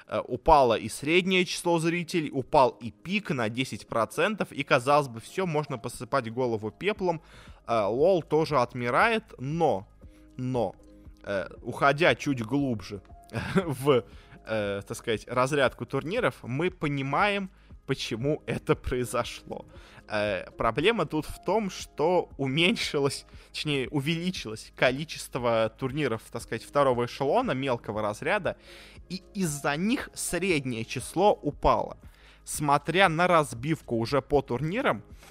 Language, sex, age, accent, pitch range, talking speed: Russian, male, 20-39, native, 110-150 Hz, 105 wpm